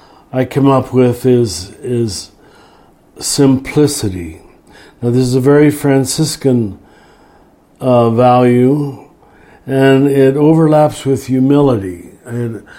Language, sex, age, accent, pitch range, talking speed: English, male, 60-79, American, 120-145 Hz, 100 wpm